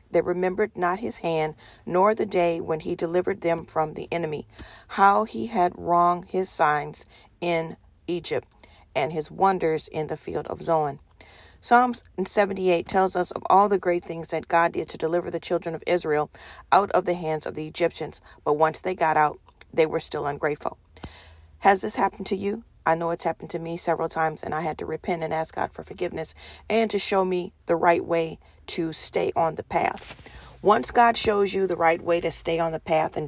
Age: 40-59